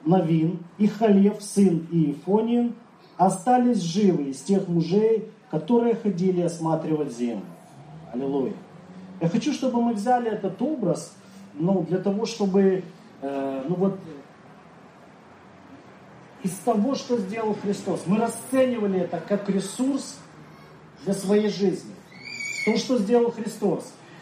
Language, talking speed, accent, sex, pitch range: Russian, 115 wpm, native, male, 180-230 Hz